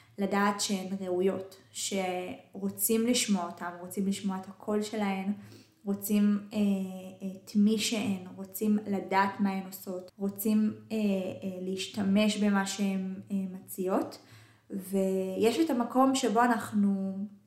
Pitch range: 190-215 Hz